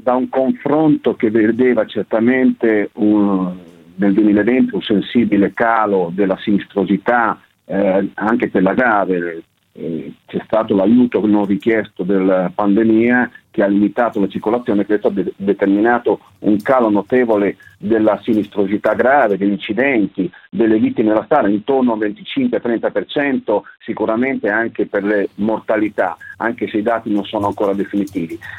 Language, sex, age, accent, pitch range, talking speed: Italian, male, 50-69, native, 105-135 Hz, 130 wpm